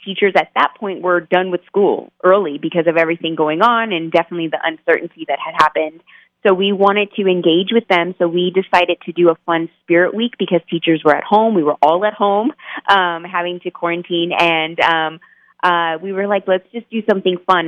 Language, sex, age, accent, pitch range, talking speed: English, female, 20-39, American, 165-190 Hz, 210 wpm